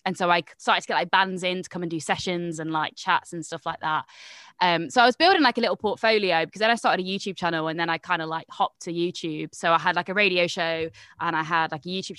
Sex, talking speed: female, 290 wpm